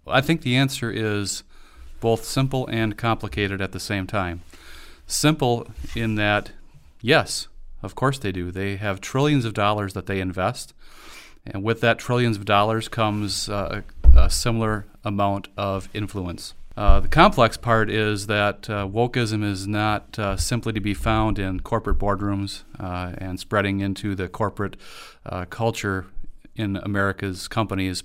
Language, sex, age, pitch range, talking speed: English, male, 40-59, 95-115 Hz, 150 wpm